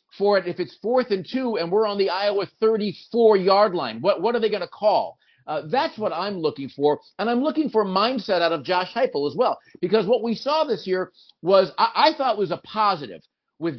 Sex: male